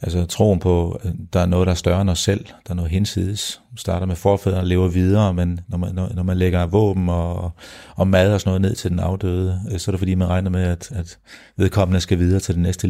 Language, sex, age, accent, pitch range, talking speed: Danish, male, 40-59, native, 90-105 Hz, 255 wpm